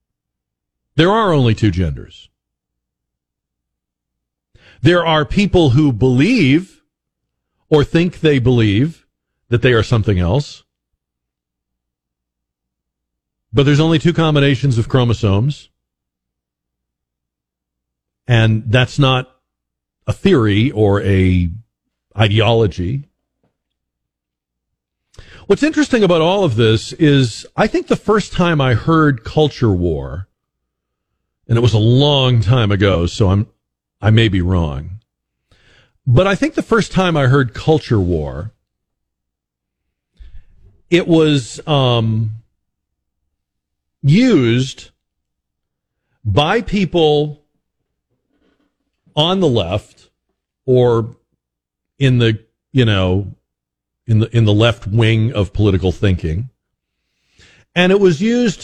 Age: 40-59